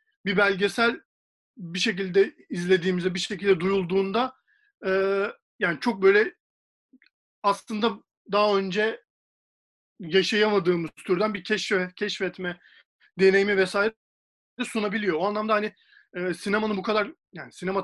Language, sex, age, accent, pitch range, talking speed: Turkish, male, 40-59, native, 175-225 Hz, 110 wpm